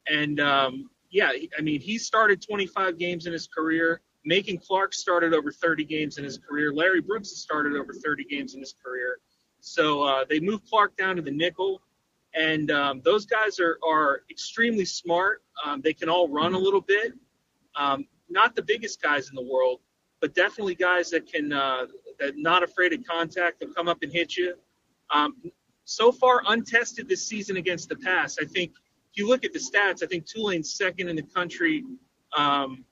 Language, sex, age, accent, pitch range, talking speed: English, male, 30-49, American, 155-210 Hz, 195 wpm